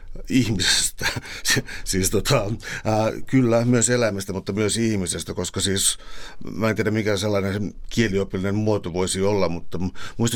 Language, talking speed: Finnish, 135 wpm